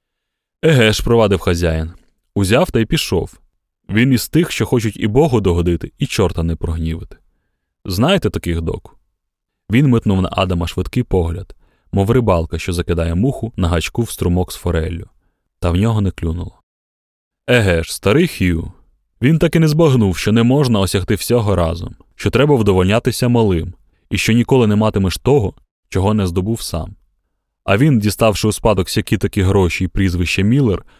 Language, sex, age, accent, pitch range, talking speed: Ukrainian, male, 20-39, native, 85-110 Hz, 160 wpm